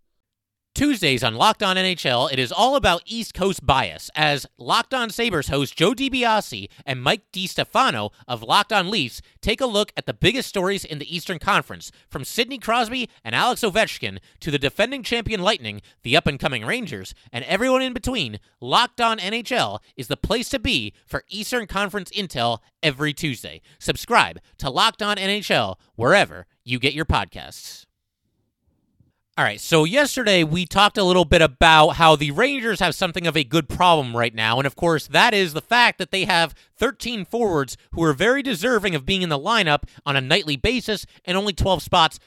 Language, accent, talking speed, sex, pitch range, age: English, American, 185 wpm, male, 140-205 Hz, 30-49